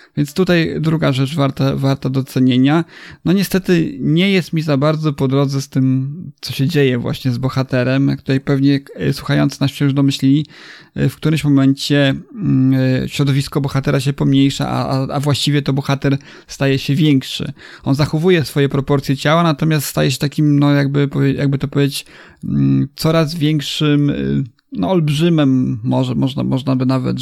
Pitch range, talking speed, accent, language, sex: 135-150 Hz, 150 wpm, Polish, English, male